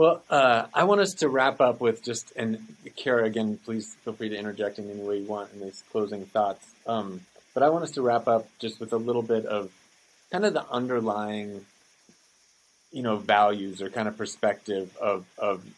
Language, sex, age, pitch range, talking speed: English, male, 30-49, 105-125 Hz, 205 wpm